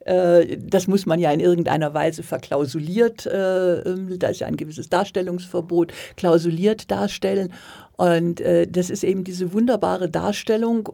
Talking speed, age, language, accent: 125 wpm, 50-69, German, German